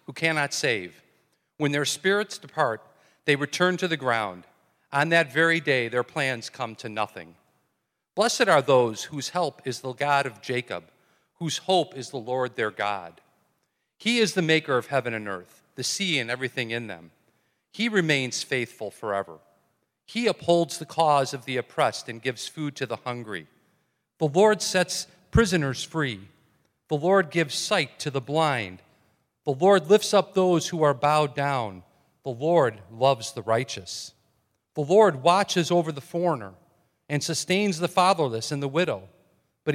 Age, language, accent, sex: 40-59, English, American, male